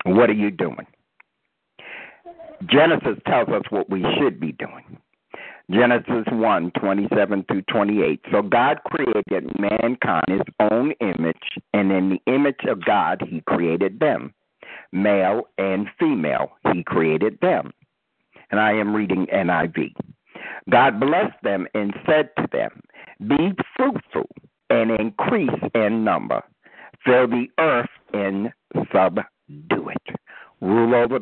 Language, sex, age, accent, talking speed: English, male, 60-79, American, 130 wpm